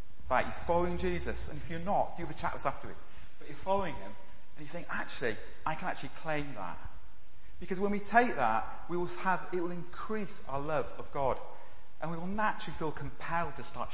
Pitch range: 140-225 Hz